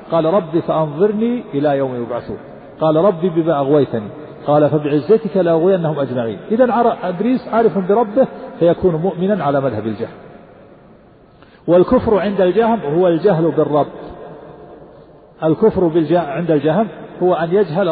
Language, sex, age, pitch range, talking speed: Arabic, male, 50-69, 160-210 Hz, 125 wpm